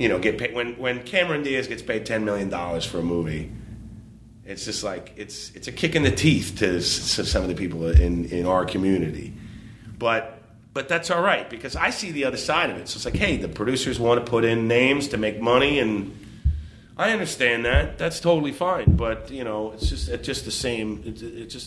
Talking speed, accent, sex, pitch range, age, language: 225 wpm, American, male, 105-130 Hz, 30-49, English